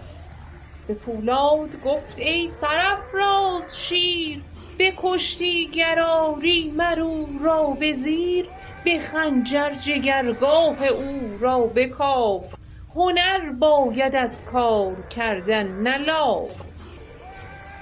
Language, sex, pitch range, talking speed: Persian, female, 215-315 Hz, 80 wpm